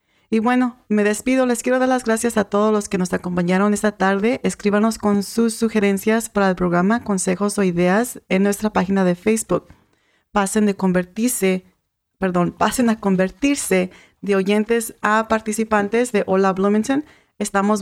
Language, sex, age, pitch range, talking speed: English, female, 40-59, 195-225 Hz, 160 wpm